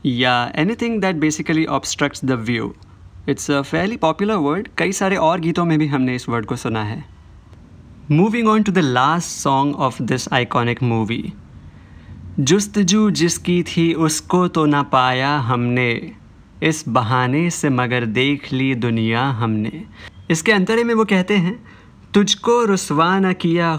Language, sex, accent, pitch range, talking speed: Hindi, male, native, 120-165 Hz, 150 wpm